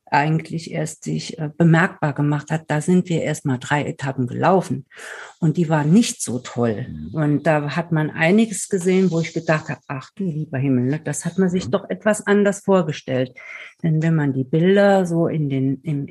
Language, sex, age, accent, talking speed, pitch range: German, female, 50-69, German, 190 wpm, 150-195 Hz